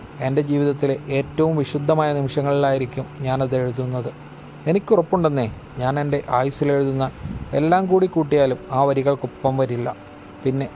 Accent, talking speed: native, 100 wpm